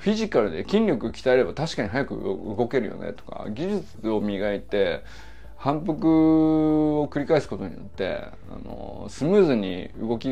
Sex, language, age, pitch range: male, Japanese, 20-39, 100-155 Hz